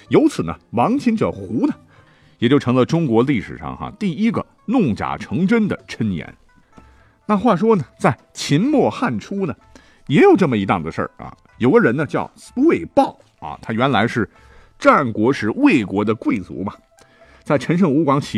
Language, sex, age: Chinese, male, 50-69